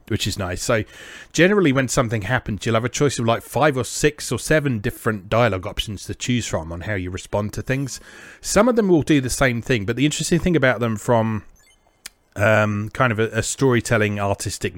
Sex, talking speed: male, 215 wpm